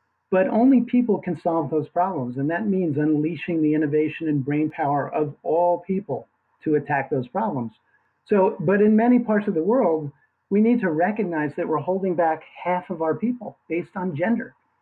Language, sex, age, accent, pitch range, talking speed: English, male, 50-69, American, 150-185 Hz, 185 wpm